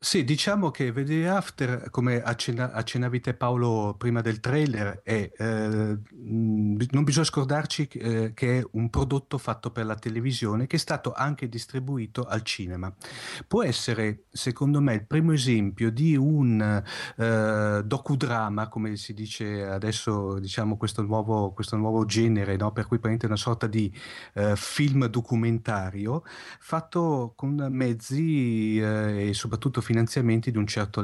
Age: 40-59